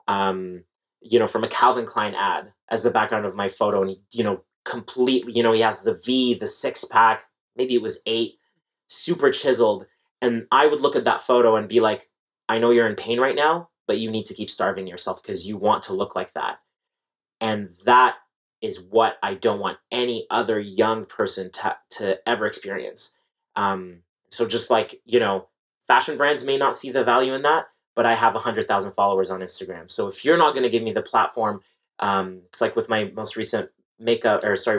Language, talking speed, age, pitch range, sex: English, 210 wpm, 30-49, 100-130 Hz, male